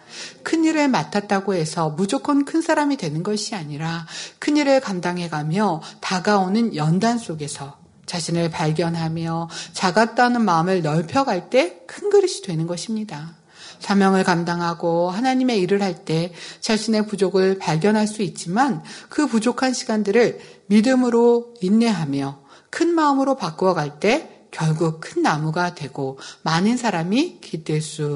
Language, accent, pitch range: Korean, native, 170-235 Hz